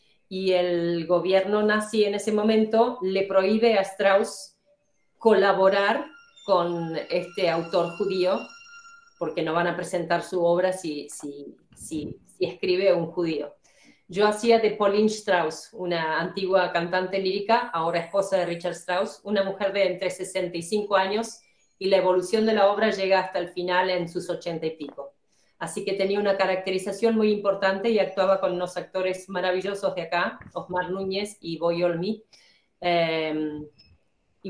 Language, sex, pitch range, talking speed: Portuguese, female, 175-200 Hz, 150 wpm